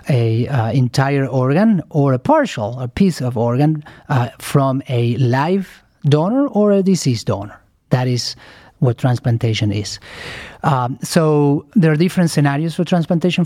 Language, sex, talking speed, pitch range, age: English, male, 145 wpm, 125-150 Hz, 40-59